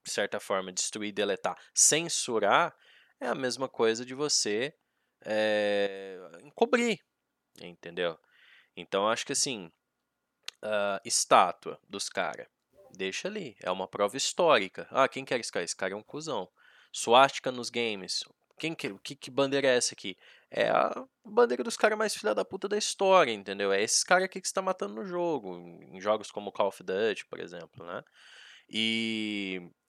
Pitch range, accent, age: 120-180 Hz, Brazilian, 20-39